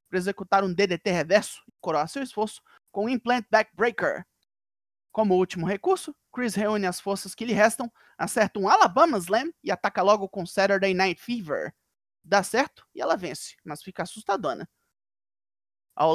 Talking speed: 160 wpm